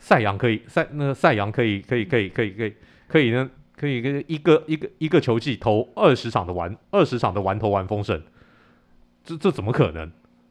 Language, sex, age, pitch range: Chinese, male, 30-49, 100-150 Hz